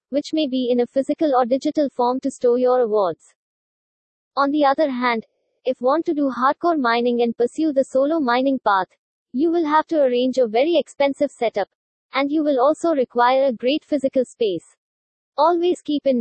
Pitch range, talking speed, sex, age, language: 245-300 Hz, 185 wpm, female, 20-39, English